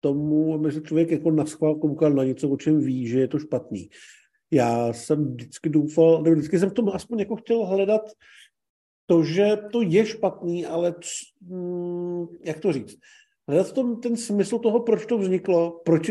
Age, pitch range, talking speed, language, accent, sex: 50-69, 140-185 Hz, 185 wpm, Czech, native, male